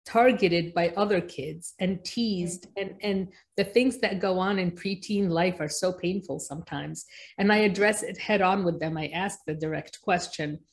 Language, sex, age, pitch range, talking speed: English, female, 50-69, 170-210 Hz, 185 wpm